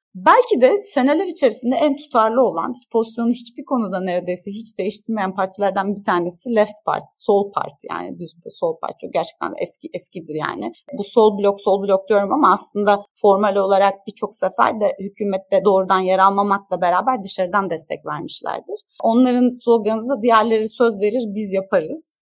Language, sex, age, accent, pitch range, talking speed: Turkish, female, 30-49, native, 180-235 Hz, 155 wpm